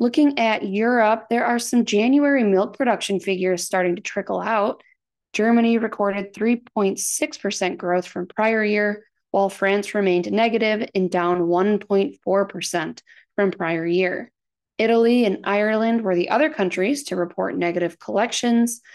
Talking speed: 135 wpm